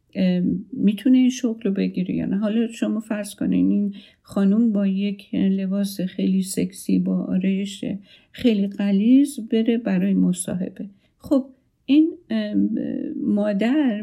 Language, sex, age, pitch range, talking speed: Persian, female, 50-69, 195-235 Hz, 115 wpm